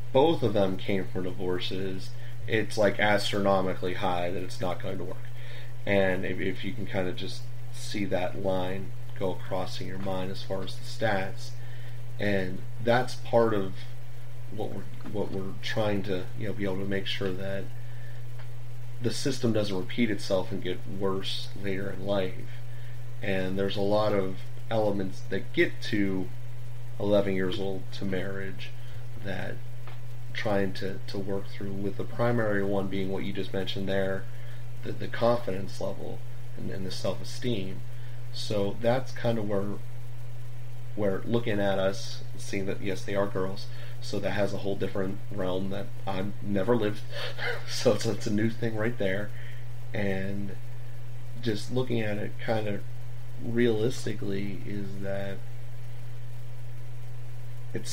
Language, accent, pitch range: English, American, 100-120 Hz